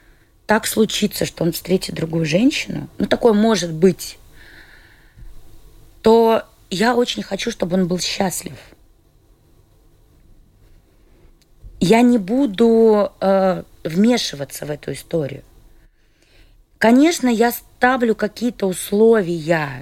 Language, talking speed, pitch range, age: Russian, 95 wpm, 165-225 Hz, 20-39